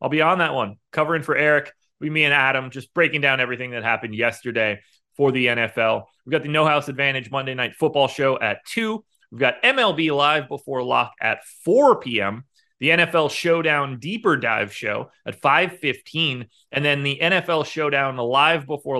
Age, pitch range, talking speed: 30-49, 115-155 Hz, 180 wpm